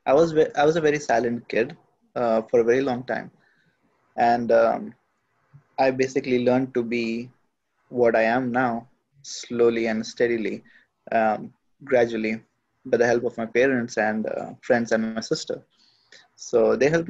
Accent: native